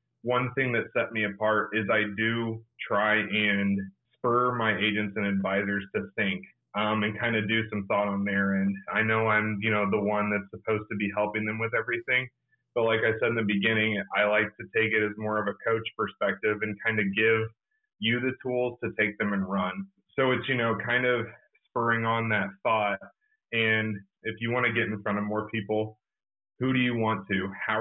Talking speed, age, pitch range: 215 wpm, 30-49, 105-115 Hz